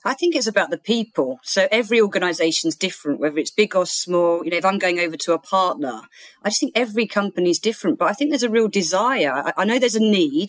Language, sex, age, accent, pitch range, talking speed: English, female, 40-59, British, 165-210 Hz, 245 wpm